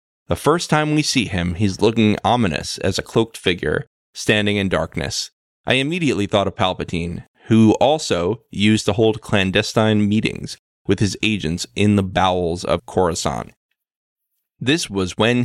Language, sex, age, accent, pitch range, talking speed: English, male, 20-39, American, 90-115 Hz, 150 wpm